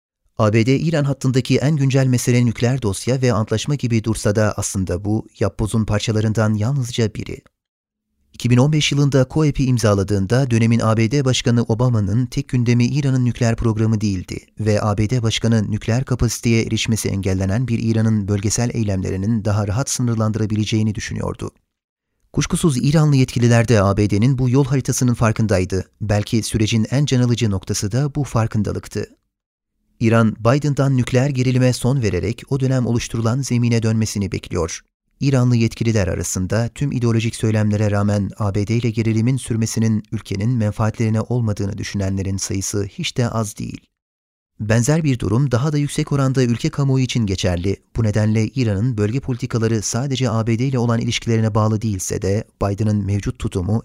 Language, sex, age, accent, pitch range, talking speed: Turkish, male, 30-49, native, 105-125 Hz, 140 wpm